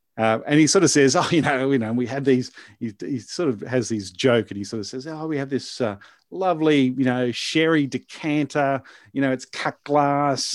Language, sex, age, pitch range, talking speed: English, male, 40-59, 115-145 Hz, 235 wpm